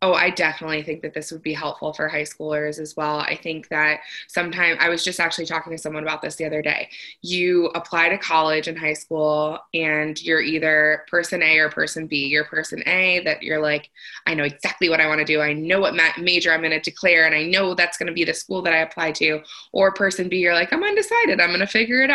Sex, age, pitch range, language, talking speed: female, 20-39, 155-180 Hz, English, 250 wpm